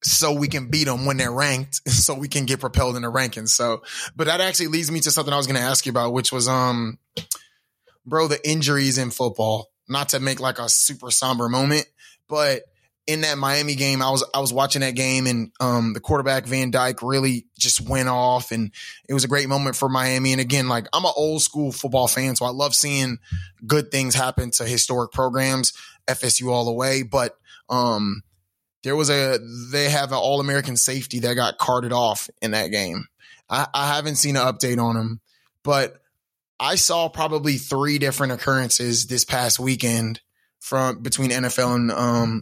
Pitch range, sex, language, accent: 120-140 Hz, male, English, American